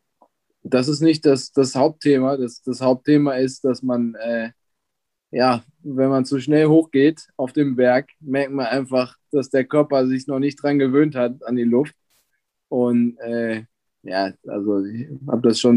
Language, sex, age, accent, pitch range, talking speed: German, male, 20-39, German, 130-160 Hz, 170 wpm